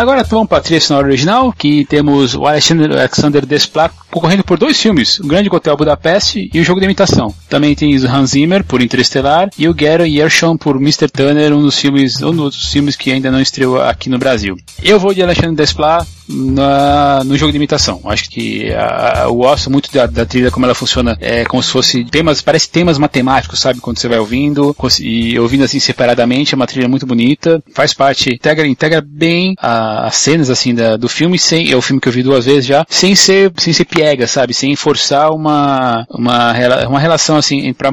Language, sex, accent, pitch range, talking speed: Portuguese, male, Brazilian, 130-155 Hz, 210 wpm